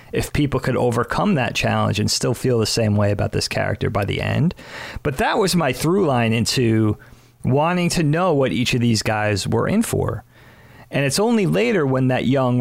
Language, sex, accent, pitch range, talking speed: English, male, American, 110-140 Hz, 205 wpm